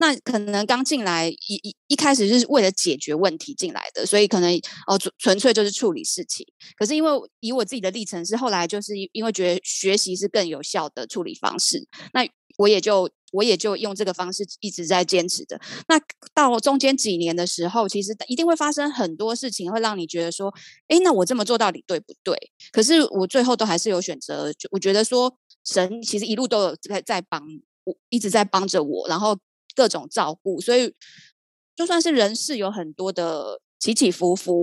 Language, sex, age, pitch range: Chinese, female, 20-39, 180-245 Hz